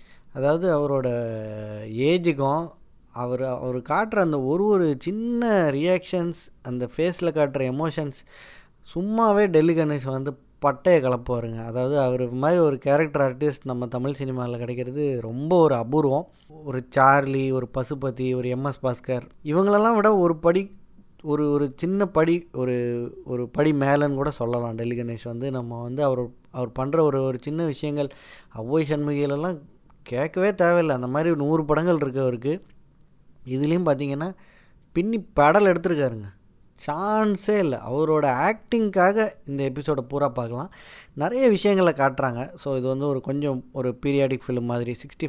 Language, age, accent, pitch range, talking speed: Tamil, 20-39, native, 130-160 Hz, 135 wpm